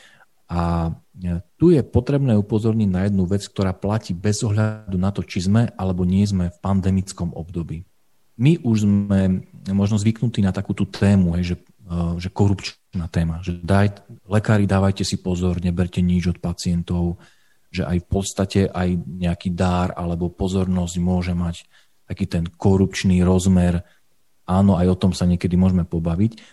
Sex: male